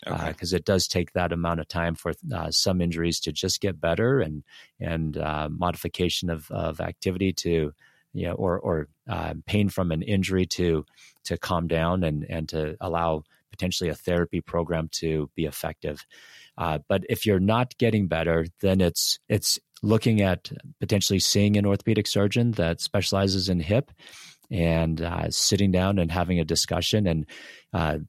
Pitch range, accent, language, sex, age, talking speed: 85-105 Hz, American, English, male, 30-49, 170 wpm